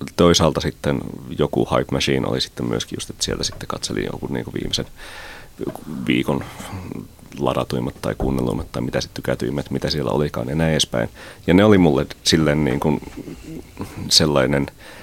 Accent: native